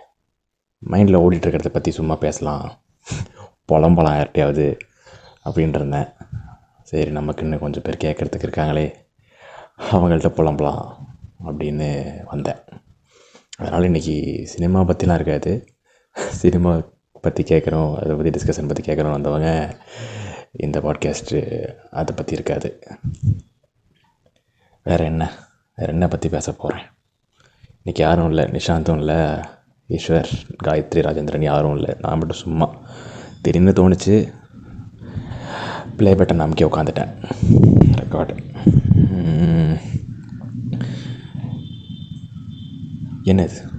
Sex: male